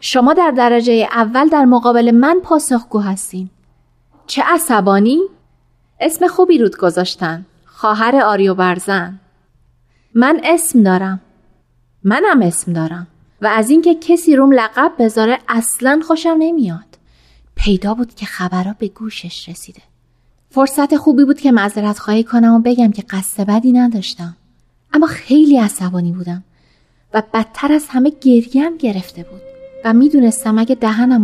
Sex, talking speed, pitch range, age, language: female, 130 wpm, 180-255 Hz, 30-49, Persian